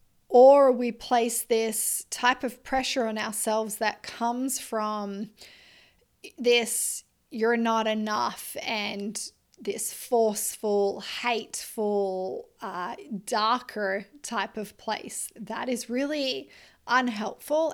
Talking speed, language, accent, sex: 100 wpm, English, Australian, female